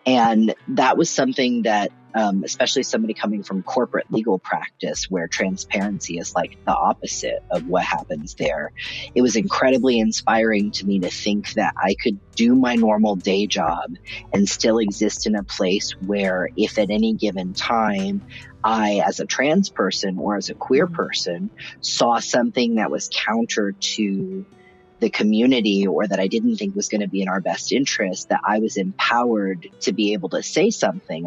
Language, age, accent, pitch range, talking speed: English, 30-49, American, 100-130 Hz, 175 wpm